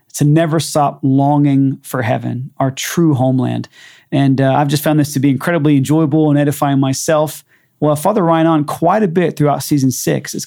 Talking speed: 190 wpm